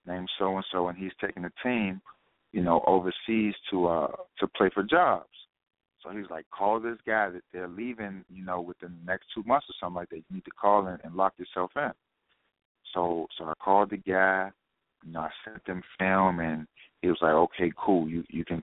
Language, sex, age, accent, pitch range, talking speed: English, male, 40-59, American, 90-100 Hz, 220 wpm